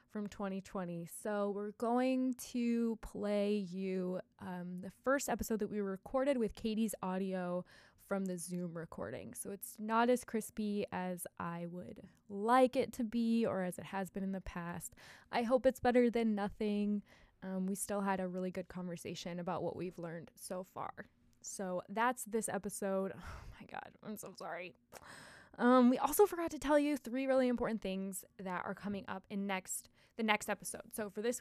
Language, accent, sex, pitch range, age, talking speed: English, American, female, 190-230 Hz, 20-39, 180 wpm